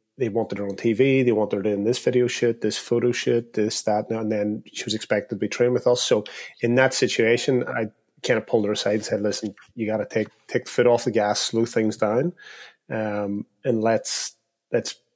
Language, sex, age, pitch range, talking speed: English, male, 30-49, 105-120 Hz, 225 wpm